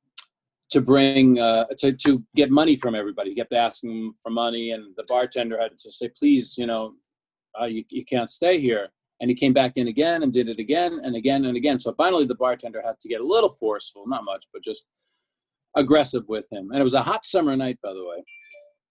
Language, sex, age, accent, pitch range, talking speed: English, male, 40-59, American, 120-145 Hz, 220 wpm